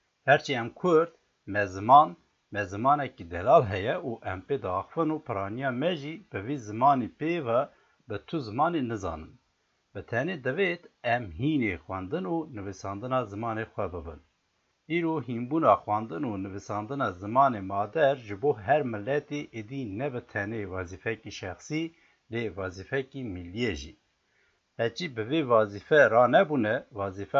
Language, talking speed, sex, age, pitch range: Turkish, 130 wpm, male, 60-79, 100-145 Hz